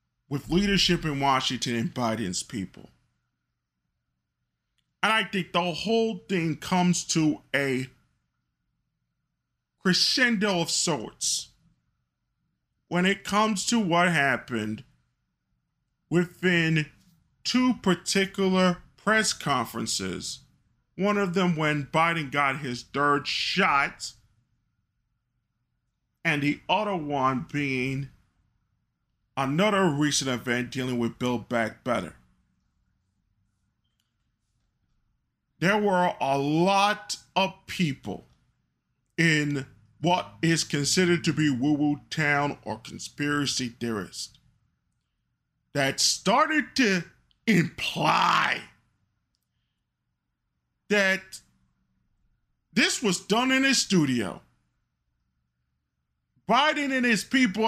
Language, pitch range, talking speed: English, 115-185 Hz, 85 wpm